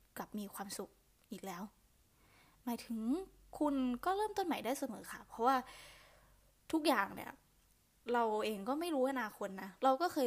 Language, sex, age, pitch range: Thai, female, 10-29, 210-265 Hz